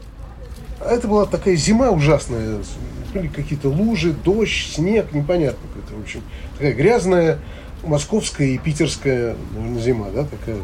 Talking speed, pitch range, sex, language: 120 wpm, 120-190 Hz, male, Russian